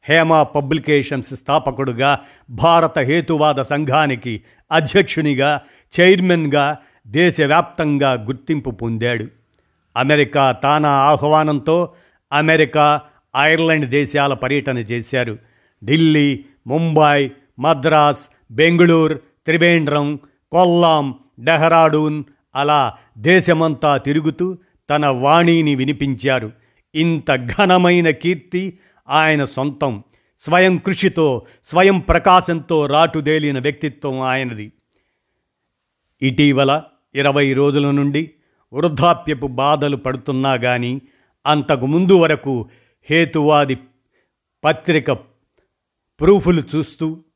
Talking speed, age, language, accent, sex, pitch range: 75 wpm, 50-69, Telugu, native, male, 135-160 Hz